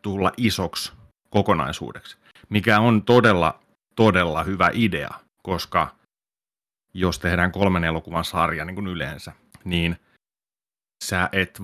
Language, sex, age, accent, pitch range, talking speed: Finnish, male, 30-49, native, 80-95 Hz, 110 wpm